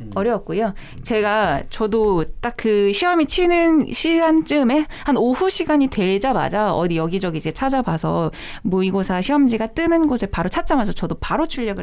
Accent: native